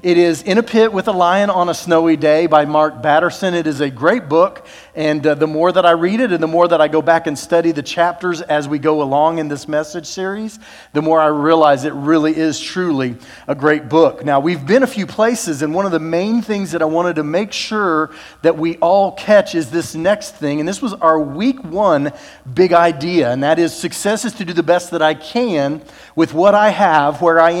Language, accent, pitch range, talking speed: English, American, 155-185 Hz, 240 wpm